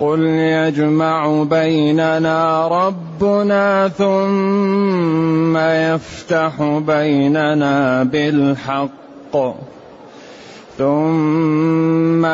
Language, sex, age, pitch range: Arabic, male, 30-49, 140-165 Hz